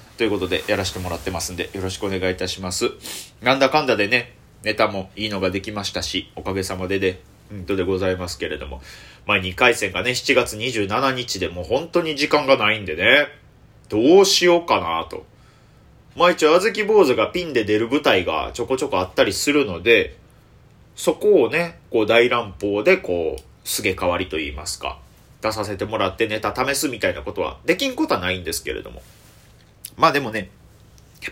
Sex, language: male, Japanese